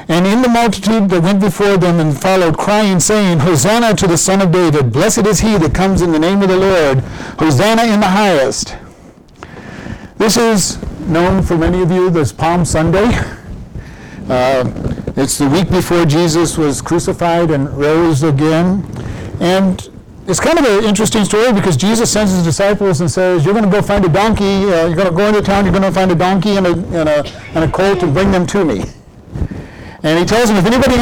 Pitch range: 165-205 Hz